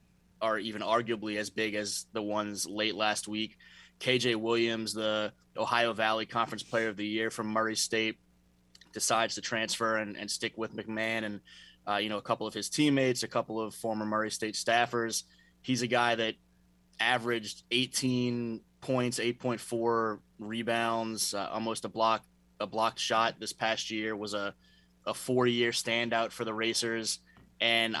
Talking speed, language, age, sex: 165 wpm, English, 20-39, male